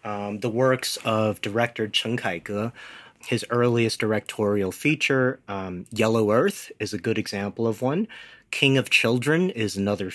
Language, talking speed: English, 150 wpm